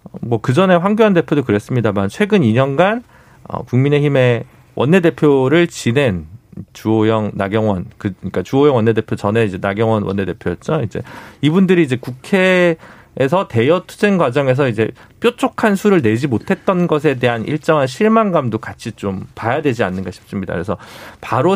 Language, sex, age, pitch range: Korean, male, 40-59, 110-165 Hz